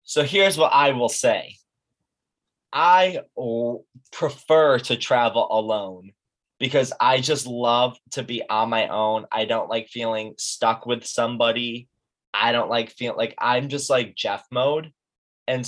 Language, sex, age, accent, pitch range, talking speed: English, male, 20-39, American, 105-130 Hz, 145 wpm